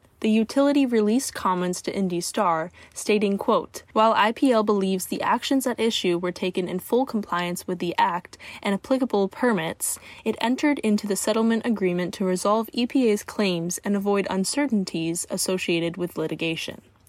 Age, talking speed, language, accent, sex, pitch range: 10-29, 150 wpm, English, American, female, 180-225 Hz